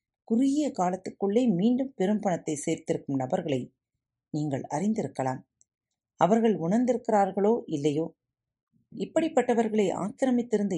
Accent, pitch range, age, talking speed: native, 130-215 Hz, 40-59, 80 wpm